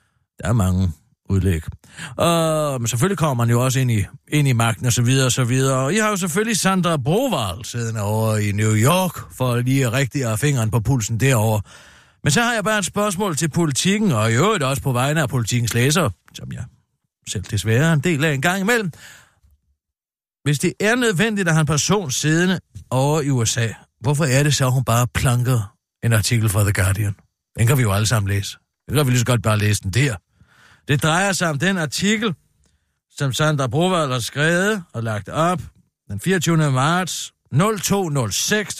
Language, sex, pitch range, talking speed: Danish, male, 115-175 Hz, 195 wpm